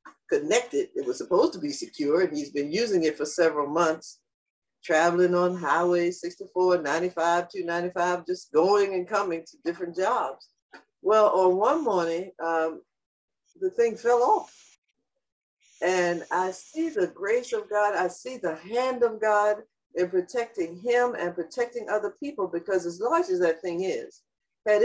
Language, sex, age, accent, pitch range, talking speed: English, female, 60-79, American, 175-290 Hz, 155 wpm